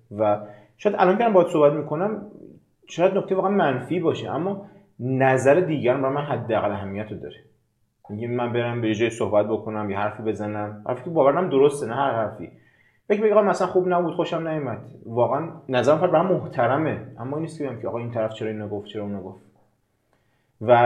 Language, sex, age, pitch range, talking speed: Persian, male, 30-49, 110-145 Hz, 185 wpm